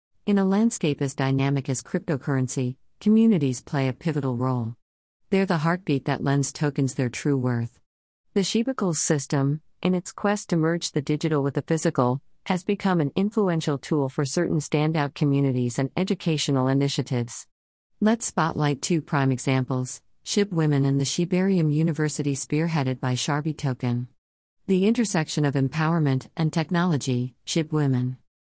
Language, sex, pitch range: English, female, 130-170 Hz